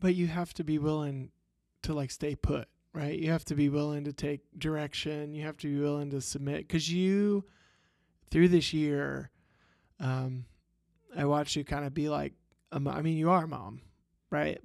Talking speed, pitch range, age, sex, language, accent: 195 wpm, 145-180 Hz, 20-39, male, English, American